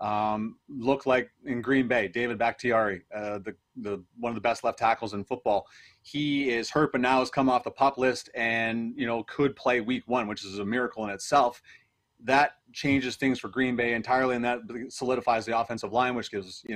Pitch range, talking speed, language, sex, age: 115-135 Hz, 210 wpm, English, male, 30-49